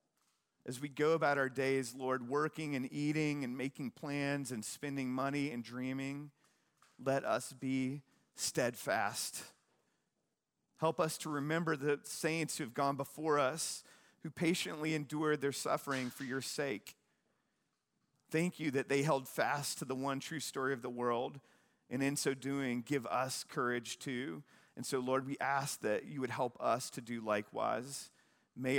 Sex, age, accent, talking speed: male, 40-59, American, 160 wpm